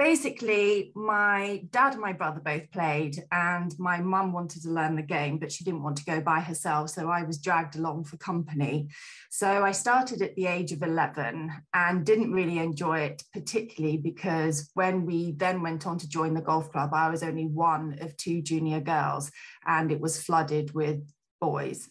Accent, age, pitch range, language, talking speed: British, 20-39, 155-175 Hz, English, 190 wpm